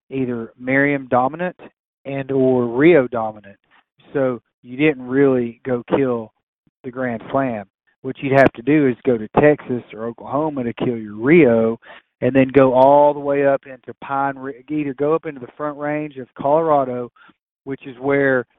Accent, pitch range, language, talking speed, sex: American, 125-140 Hz, English, 170 wpm, male